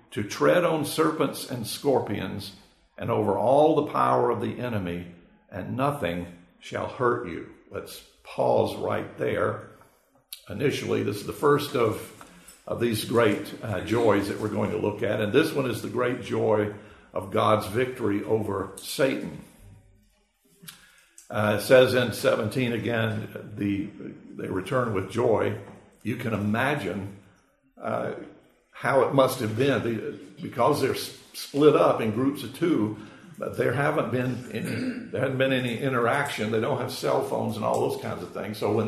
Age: 60-79